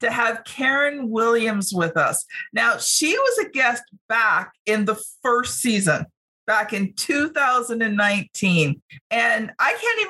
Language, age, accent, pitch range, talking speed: English, 50-69, American, 200-270 Hz, 135 wpm